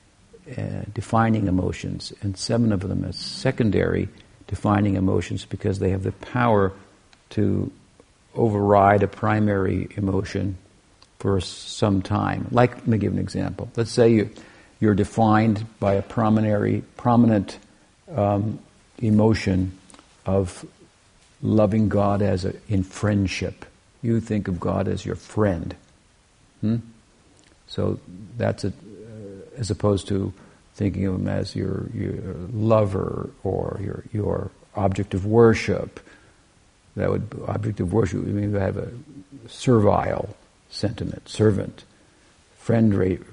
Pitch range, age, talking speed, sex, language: 95-110 Hz, 60-79, 120 wpm, male, English